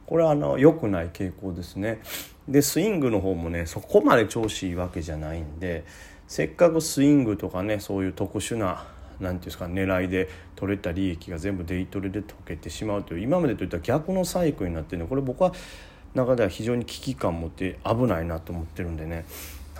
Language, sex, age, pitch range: Japanese, male, 40-59, 90-120 Hz